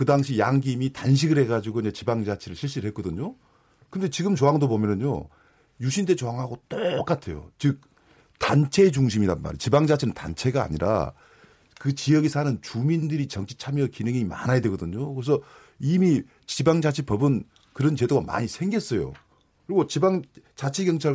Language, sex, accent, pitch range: Korean, male, native, 125-160 Hz